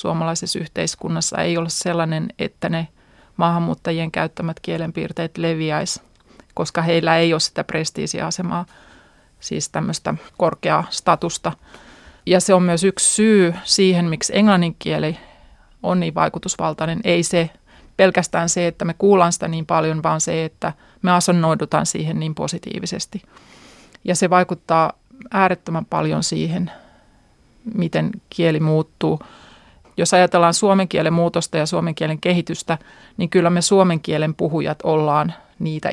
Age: 30-49